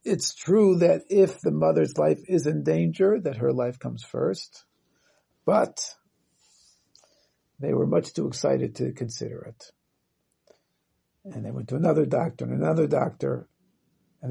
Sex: male